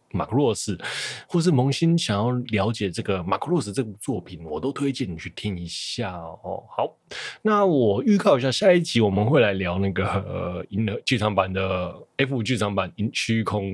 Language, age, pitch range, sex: Chinese, 20-39, 95-130 Hz, male